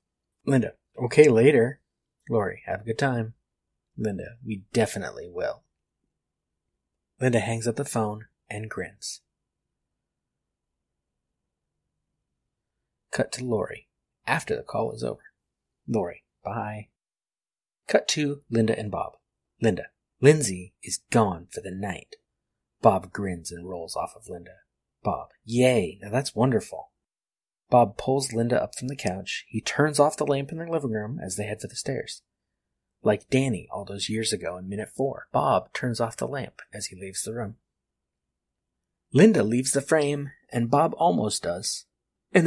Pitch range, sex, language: 95-130 Hz, male, English